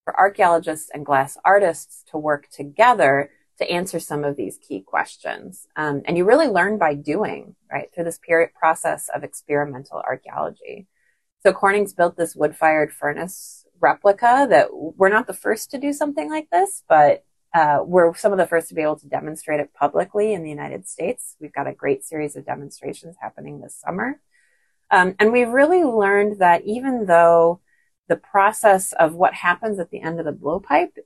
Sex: female